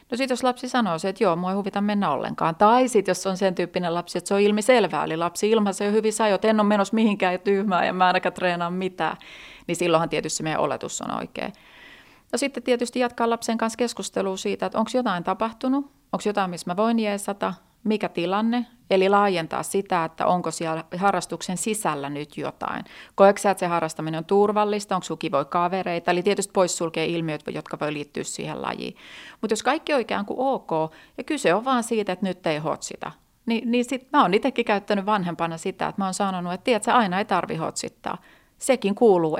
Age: 30-49